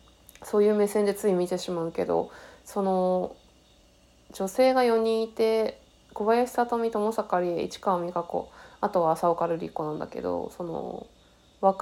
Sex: female